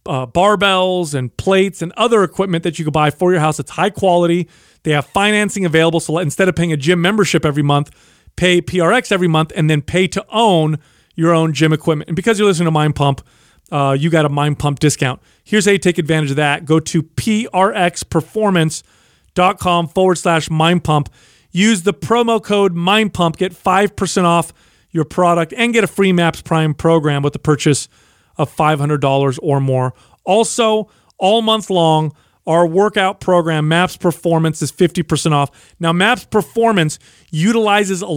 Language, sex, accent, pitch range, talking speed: English, male, American, 155-190 Hz, 180 wpm